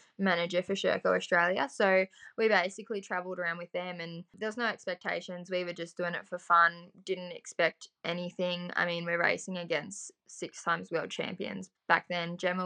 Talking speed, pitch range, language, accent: 180 wpm, 175-220 Hz, English, Australian